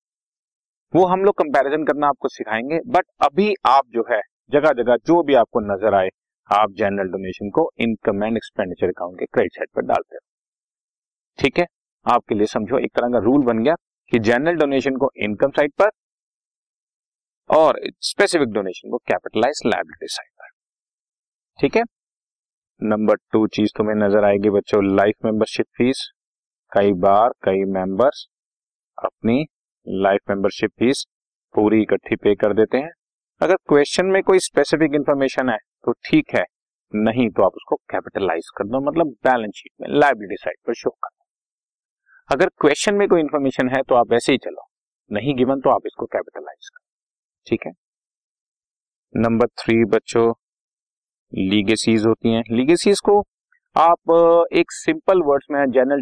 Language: Hindi